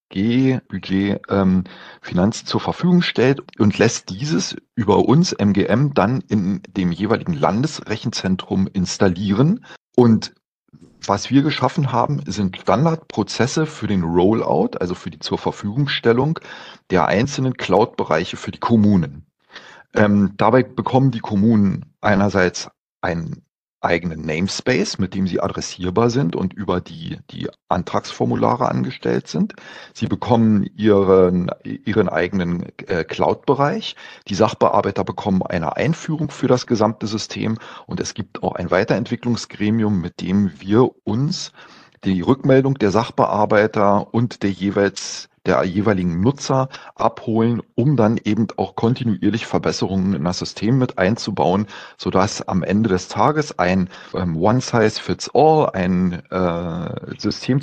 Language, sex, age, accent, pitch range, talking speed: German, male, 40-59, German, 95-125 Hz, 120 wpm